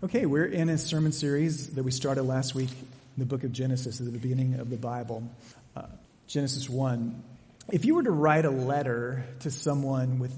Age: 30-49